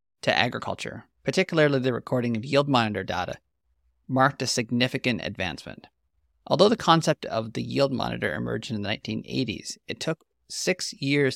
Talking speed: 150 wpm